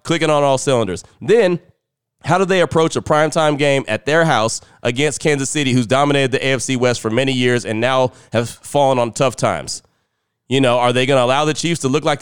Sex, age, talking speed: male, 30-49, 220 wpm